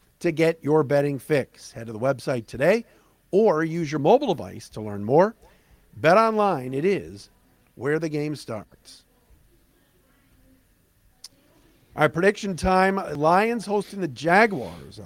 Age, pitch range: 50-69, 135-180 Hz